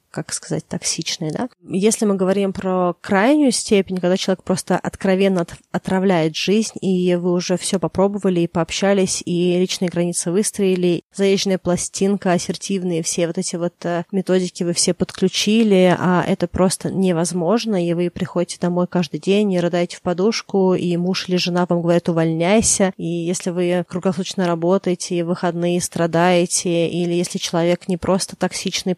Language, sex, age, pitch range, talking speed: Russian, female, 20-39, 170-190 Hz, 150 wpm